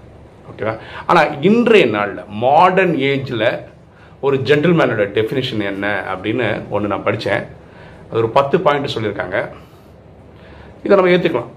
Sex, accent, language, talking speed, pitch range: male, native, Tamil, 115 wpm, 110-140 Hz